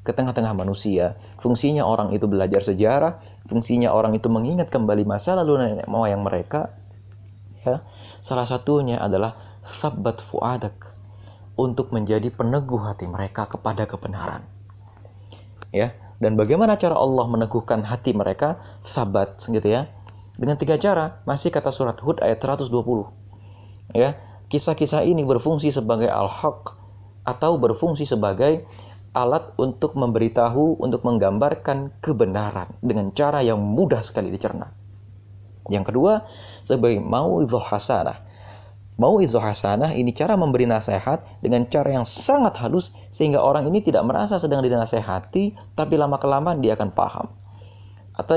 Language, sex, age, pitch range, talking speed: Indonesian, male, 20-39, 100-130 Hz, 125 wpm